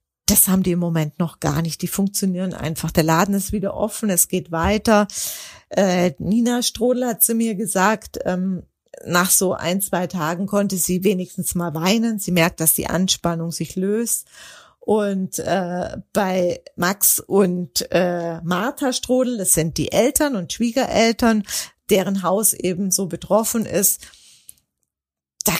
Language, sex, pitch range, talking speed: German, female, 175-215 Hz, 150 wpm